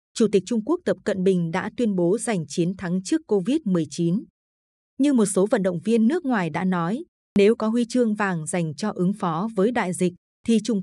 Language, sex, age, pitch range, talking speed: Vietnamese, female, 20-39, 175-235 Hz, 215 wpm